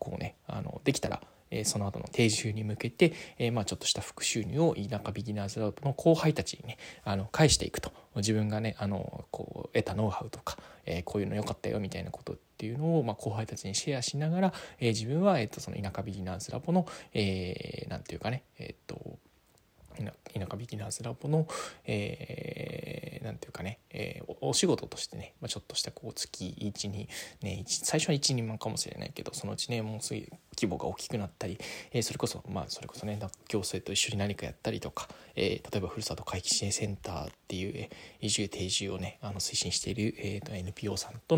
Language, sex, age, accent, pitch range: Japanese, male, 20-39, native, 100-130 Hz